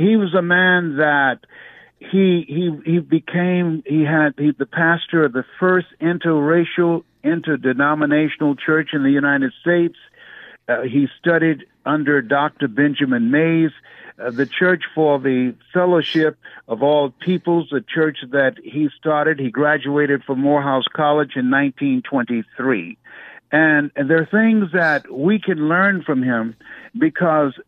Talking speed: 135 wpm